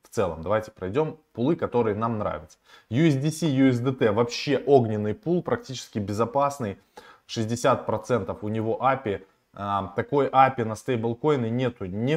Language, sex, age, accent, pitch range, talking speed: Russian, male, 20-39, native, 105-135 Hz, 125 wpm